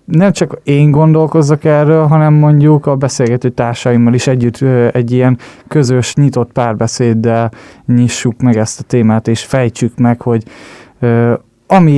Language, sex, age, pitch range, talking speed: Hungarian, male, 20-39, 120-140 Hz, 135 wpm